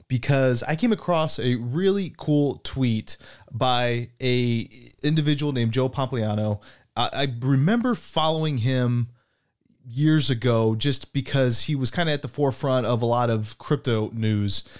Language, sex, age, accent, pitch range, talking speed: English, male, 20-39, American, 115-140 Hz, 140 wpm